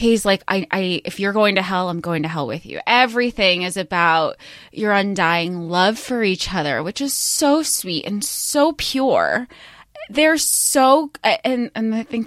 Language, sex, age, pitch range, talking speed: English, female, 20-39, 190-255 Hz, 185 wpm